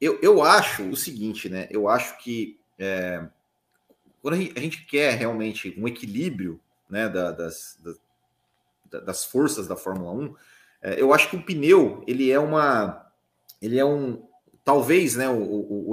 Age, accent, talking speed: 30-49, Brazilian, 160 wpm